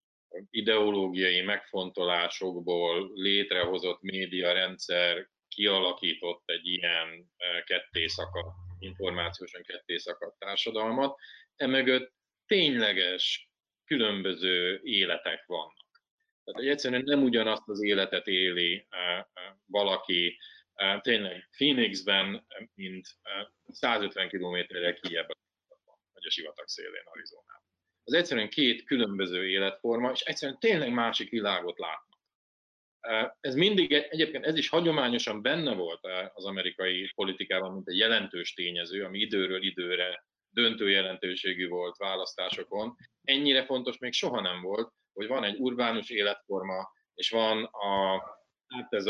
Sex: male